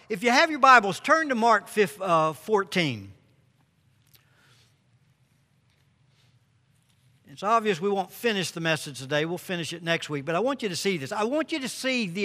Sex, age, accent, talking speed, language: male, 60-79, American, 175 wpm, English